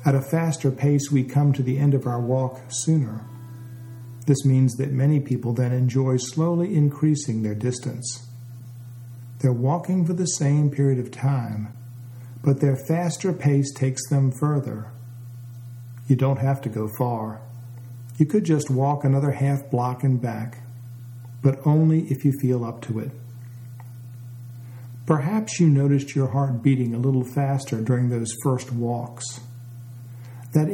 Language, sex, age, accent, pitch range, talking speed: English, male, 50-69, American, 120-140 Hz, 150 wpm